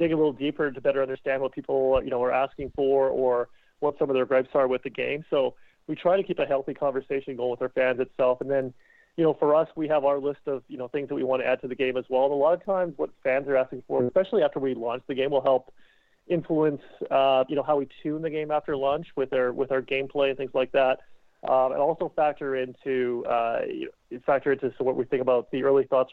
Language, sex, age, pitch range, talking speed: English, male, 30-49, 130-145 Hz, 270 wpm